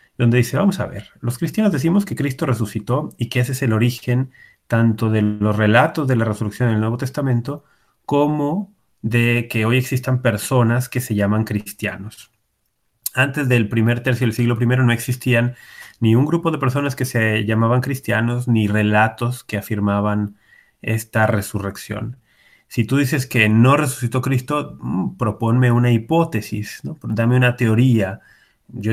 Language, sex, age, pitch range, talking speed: Spanish, male, 30-49, 110-130 Hz, 160 wpm